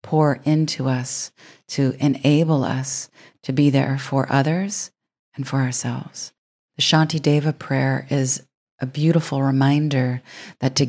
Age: 40-59